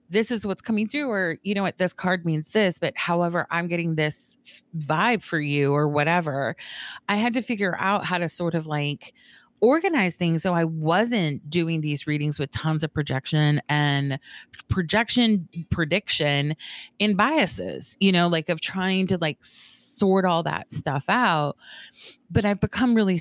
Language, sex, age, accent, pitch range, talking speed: English, female, 30-49, American, 155-210 Hz, 170 wpm